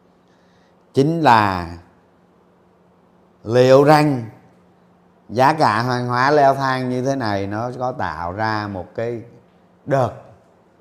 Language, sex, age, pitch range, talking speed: Vietnamese, male, 30-49, 100-135 Hz, 110 wpm